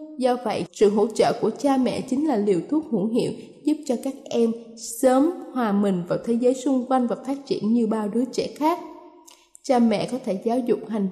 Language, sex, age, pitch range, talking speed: Vietnamese, female, 10-29, 215-280 Hz, 220 wpm